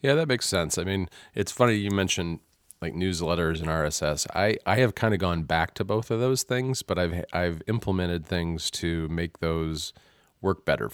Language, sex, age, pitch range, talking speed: English, male, 40-59, 75-95 Hz, 200 wpm